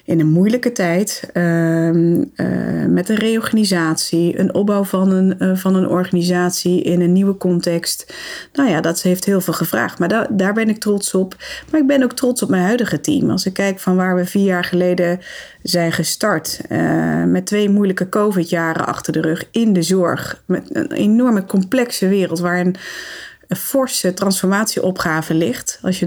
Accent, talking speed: Dutch, 175 wpm